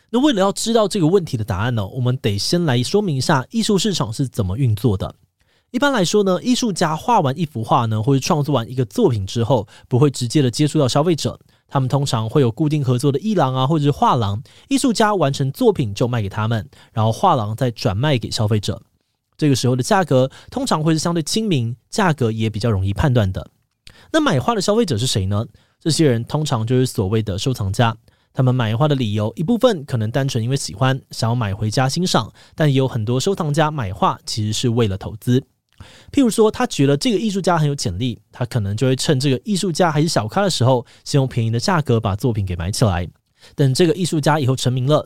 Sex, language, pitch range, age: male, Chinese, 115-160 Hz, 20-39